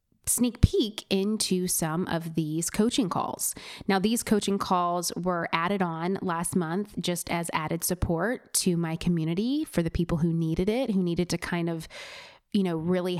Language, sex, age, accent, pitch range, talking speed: English, female, 20-39, American, 170-185 Hz, 175 wpm